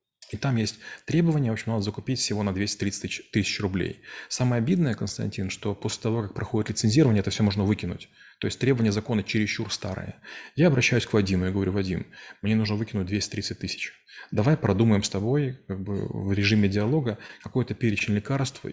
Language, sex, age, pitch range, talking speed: Russian, male, 20-39, 100-115 Hz, 180 wpm